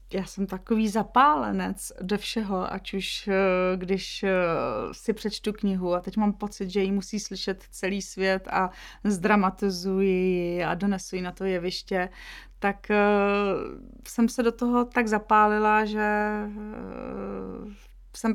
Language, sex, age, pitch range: Czech, female, 30-49, 195-220 Hz